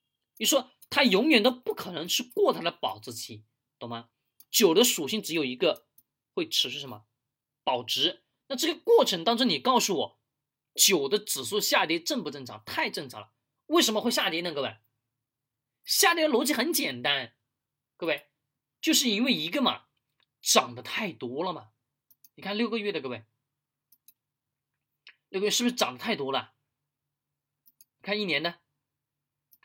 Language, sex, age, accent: Chinese, male, 20-39, native